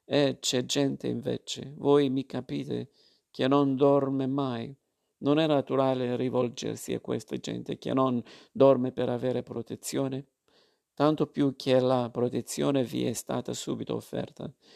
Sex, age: male, 50-69